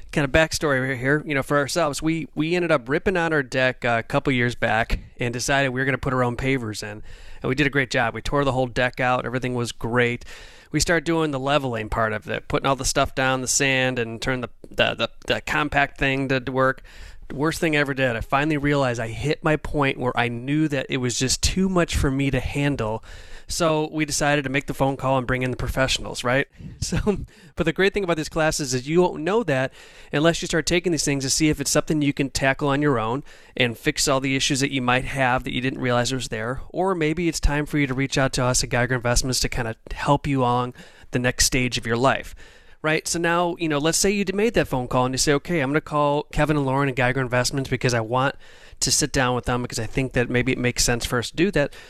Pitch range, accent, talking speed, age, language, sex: 125-150 Hz, American, 270 wpm, 30-49, English, male